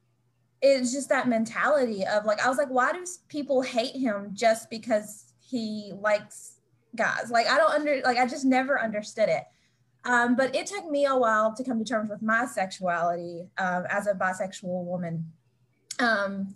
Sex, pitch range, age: female, 185-255 Hz, 20-39